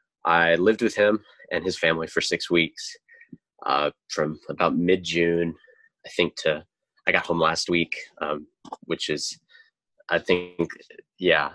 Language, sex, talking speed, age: English, male, 150 wpm, 20-39